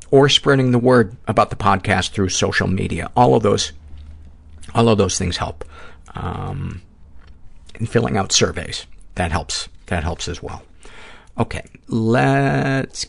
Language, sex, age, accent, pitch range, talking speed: English, male, 50-69, American, 90-115 Hz, 140 wpm